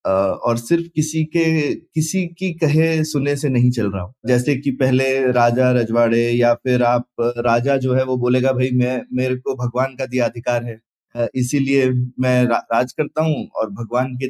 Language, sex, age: Hindi, male, 20-39